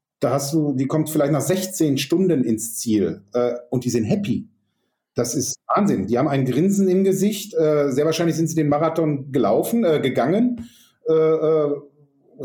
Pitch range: 130-170 Hz